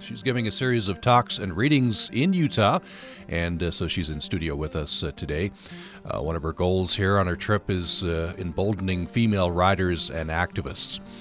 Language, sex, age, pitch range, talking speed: English, male, 40-59, 80-105 Hz, 195 wpm